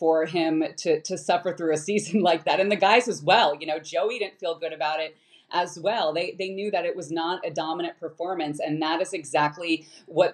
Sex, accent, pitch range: female, American, 160-190 Hz